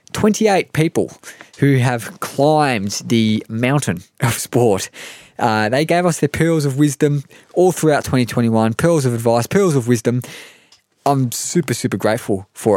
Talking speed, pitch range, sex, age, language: 145 wpm, 105-135 Hz, male, 20-39, English